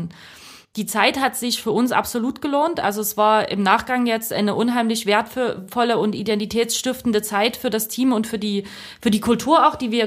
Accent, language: German, German